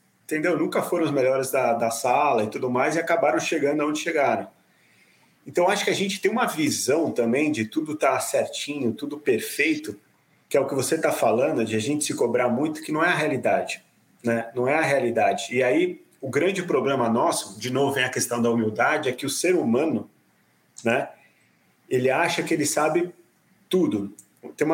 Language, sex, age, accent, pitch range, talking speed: Portuguese, male, 30-49, Brazilian, 120-170 Hz, 195 wpm